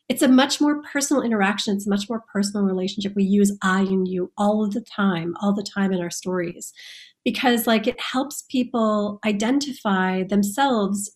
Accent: American